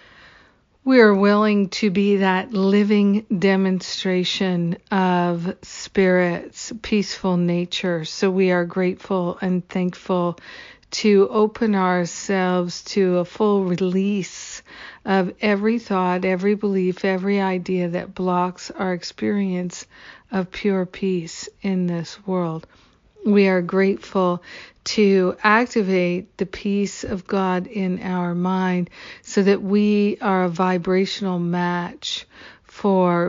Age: 50-69